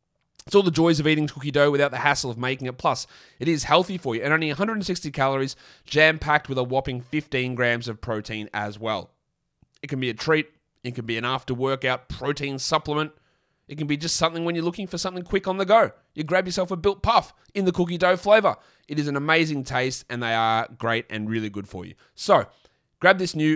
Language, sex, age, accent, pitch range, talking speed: English, male, 20-39, Australian, 130-165 Hz, 225 wpm